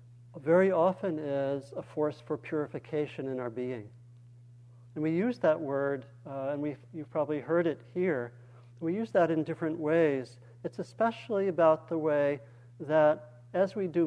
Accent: American